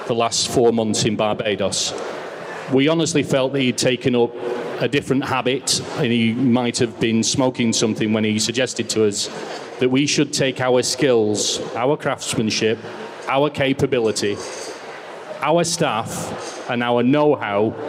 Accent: British